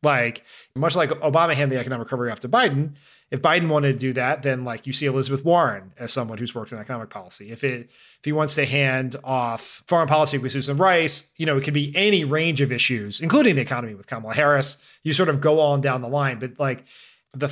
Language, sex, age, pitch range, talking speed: English, male, 30-49, 125-155 Hz, 235 wpm